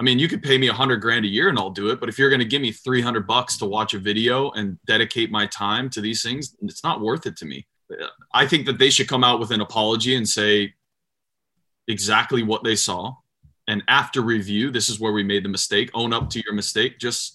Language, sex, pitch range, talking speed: English, male, 105-125 Hz, 255 wpm